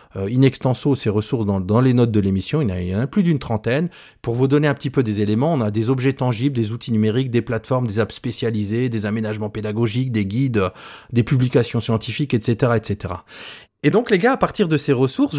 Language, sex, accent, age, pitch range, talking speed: French, male, French, 30-49, 115-150 Hz, 235 wpm